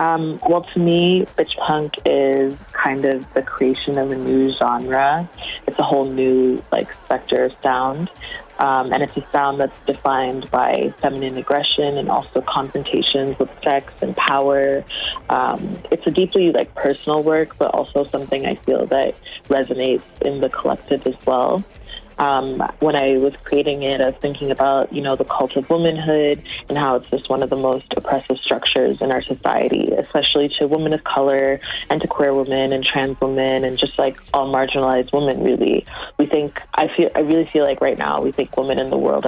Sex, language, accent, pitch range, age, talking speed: female, English, American, 135-145 Hz, 20-39, 185 wpm